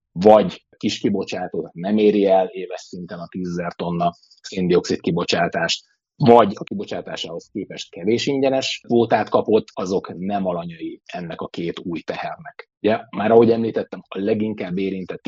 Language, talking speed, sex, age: Hungarian, 150 wpm, male, 30-49